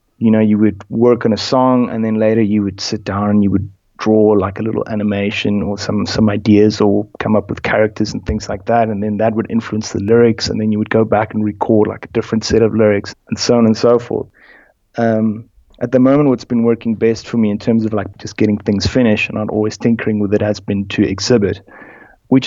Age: 30-49